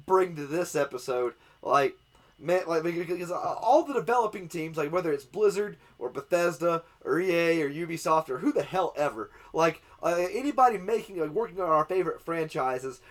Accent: American